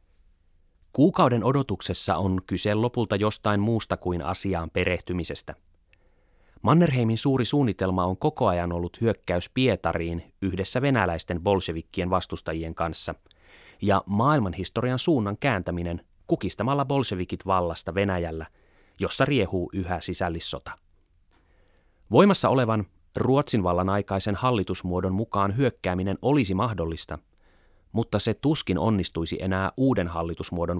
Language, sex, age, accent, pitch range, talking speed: Finnish, male, 30-49, native, 85-115 Hz, 105 wpm